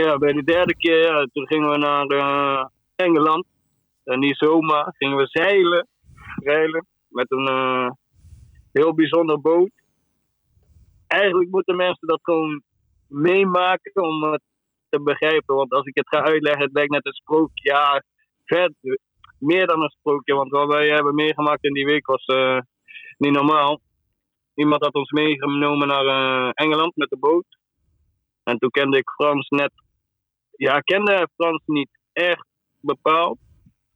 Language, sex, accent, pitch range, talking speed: Dutch, male, Dutch, 130-155 Hz, 150 wpm